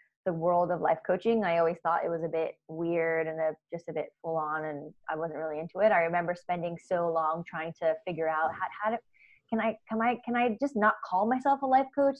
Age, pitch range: 20-39, 165-195 Hz